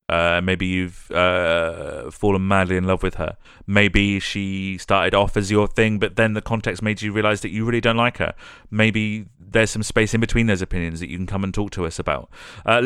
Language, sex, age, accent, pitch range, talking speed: English, male, 30-49, British, 90-115 Hz, 225 wpm